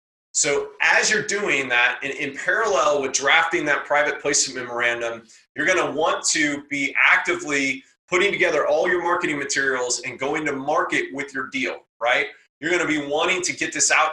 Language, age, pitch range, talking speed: English, 30-49, 130-170 Hz, 185 wpm